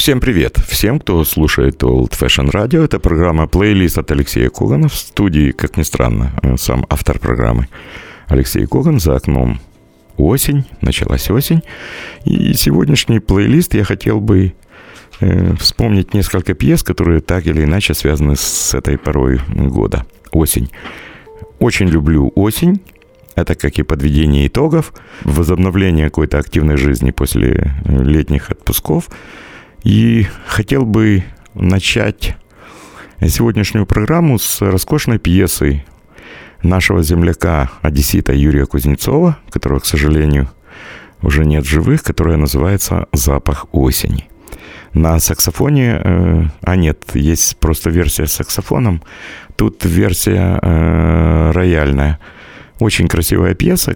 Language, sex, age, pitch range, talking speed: Russian, male, 50-69, 75-100 Hz, 115 wpm